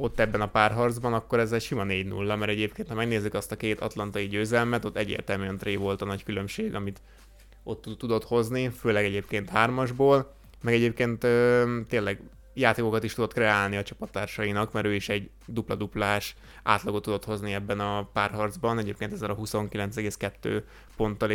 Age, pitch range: 20-39, 100-115 Hz